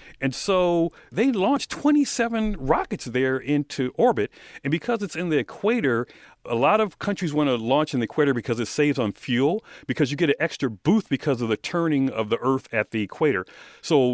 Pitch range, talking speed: 125-190 Hz, 200 wpm